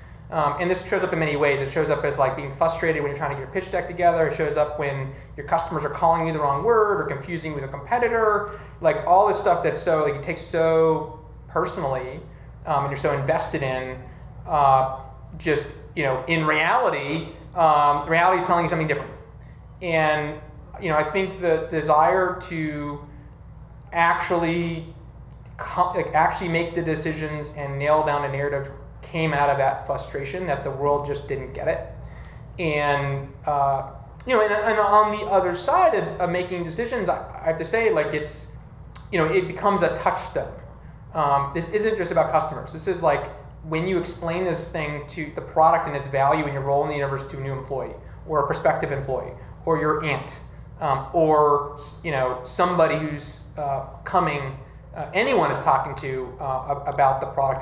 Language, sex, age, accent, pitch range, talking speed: English, male, 30-49, American, 140-170 Hz, 195 wpm